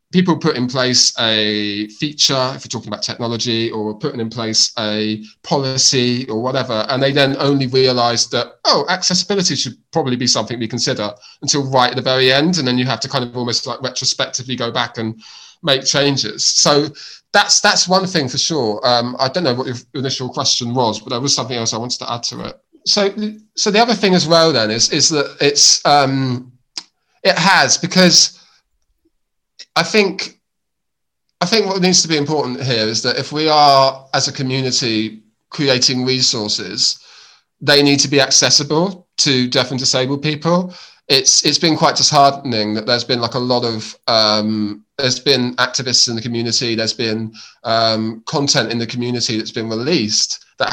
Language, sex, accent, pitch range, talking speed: English, male, British, 115-145 Hz, 185 wpm